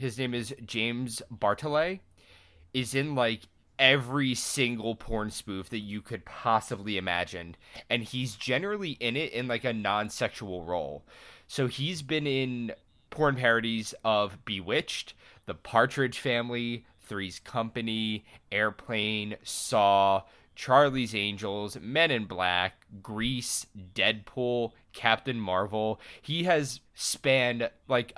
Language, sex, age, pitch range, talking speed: English, male, 20-39, 105-130 Hz, 115 wpm